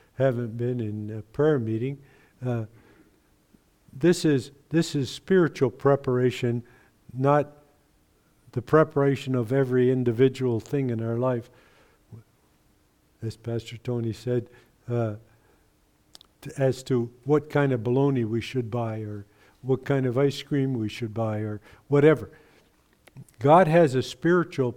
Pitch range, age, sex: 120-150 Hz, 50-69, male